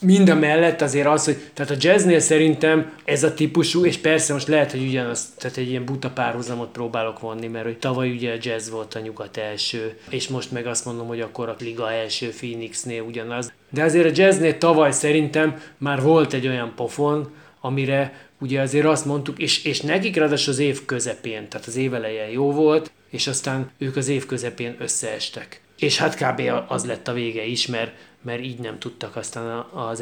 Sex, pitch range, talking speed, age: male, 120-150 Hz, 195 wpm, 20-39